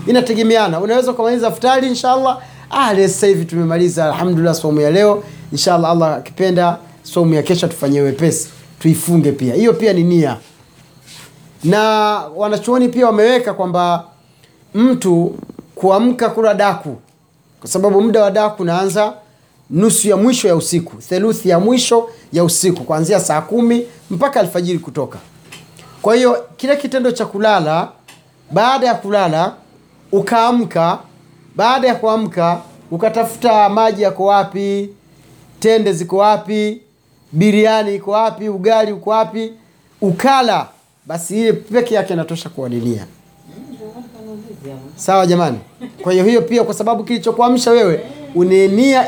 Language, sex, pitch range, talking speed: Swahili, male, 165-220 Hz, 125 wpm